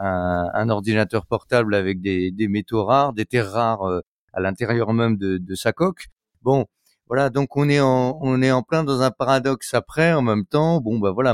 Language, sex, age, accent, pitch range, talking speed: French, male, 30-49, French, 100-140 Hz, 215 wpm